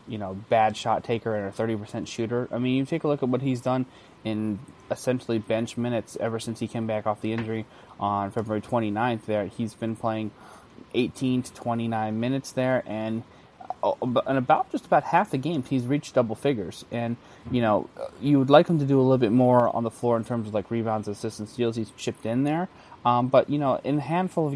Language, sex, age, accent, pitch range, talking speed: English, male, 20-39, American, 115-135 Hz, 220 wpm